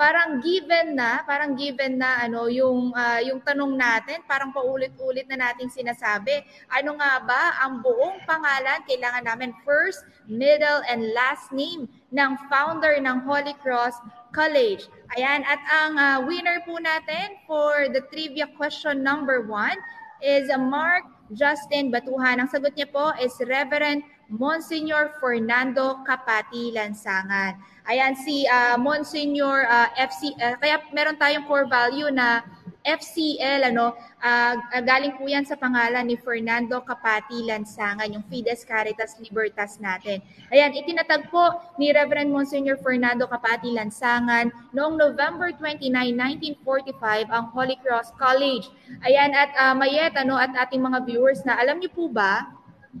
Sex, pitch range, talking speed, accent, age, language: female, 240-290 Hz, 140 wpm, native, 20-39, Filipino